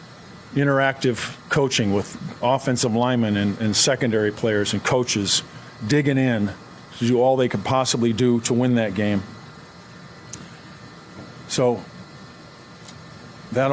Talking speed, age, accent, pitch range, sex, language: 115 wpm, 40-59, American, 110-130 Hz, male, English